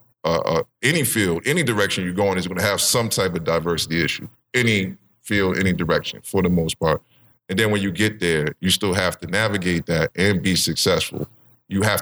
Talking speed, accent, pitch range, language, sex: 210 wpm, American, 85-115 Hz, English, male